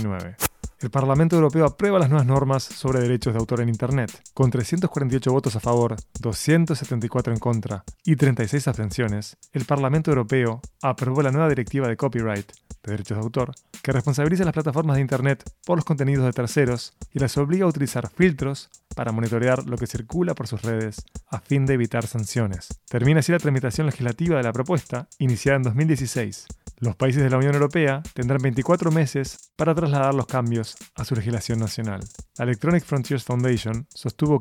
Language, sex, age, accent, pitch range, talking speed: Spanish, male, 20-39, Argentinian, 115-145 Hz, 175 wpm